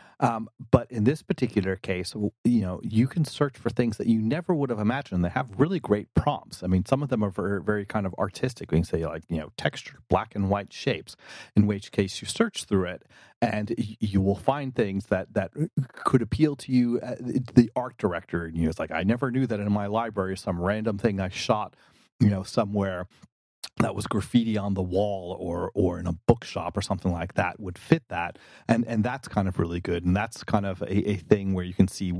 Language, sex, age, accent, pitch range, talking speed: English, male, 30-49, American, 95-120 Hz, 230 wpm